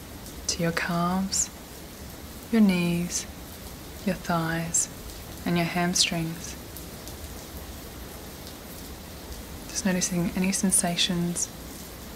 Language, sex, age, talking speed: English, female, 20-39, 65 wpm